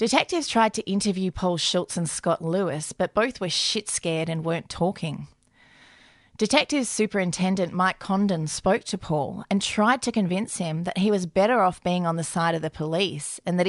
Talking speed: 190 wpm